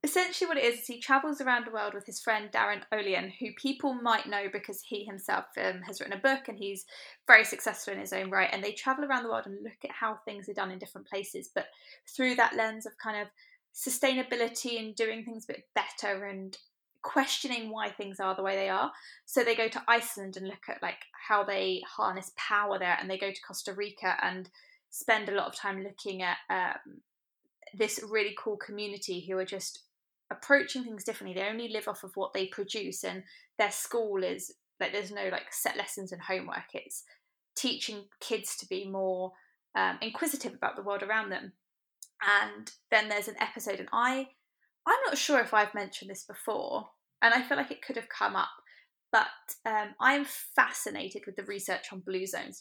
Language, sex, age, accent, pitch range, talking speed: English, female, 20-39, British, 195-240 Hz, 205 wpm